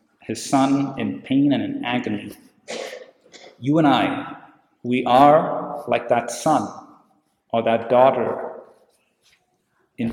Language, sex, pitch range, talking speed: English, male, 115-135 Hz, 115 wpm